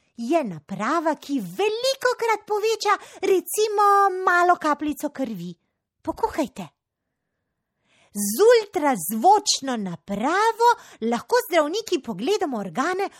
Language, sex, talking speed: Italian, female, 85 wpm